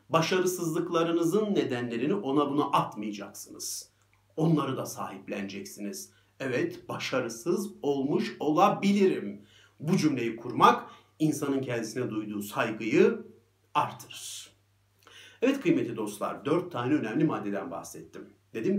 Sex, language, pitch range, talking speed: male, Turkish, 110-155 Hz, 95 wpm